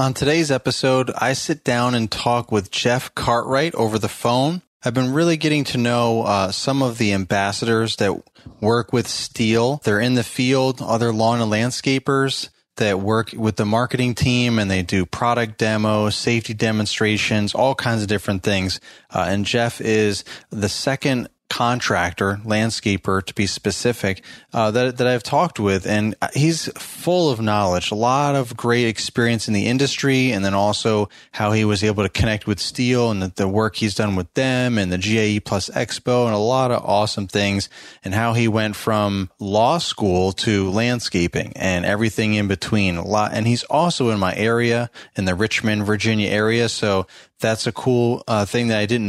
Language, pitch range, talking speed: English, 105-120 Hz, 185 wpm